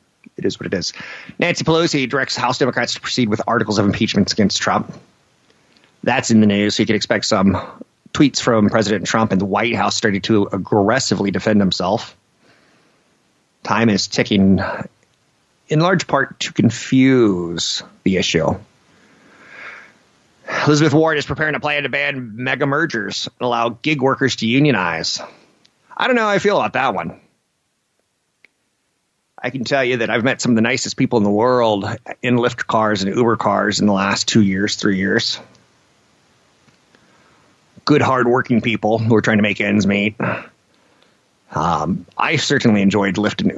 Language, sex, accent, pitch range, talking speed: English, male, American, 100-130 Hz, 165 wpm